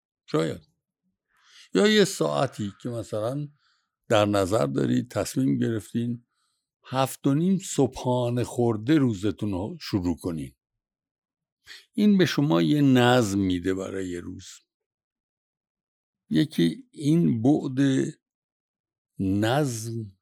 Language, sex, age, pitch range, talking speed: Persian, male, 60-79, 110-155 Hz, 90 wpm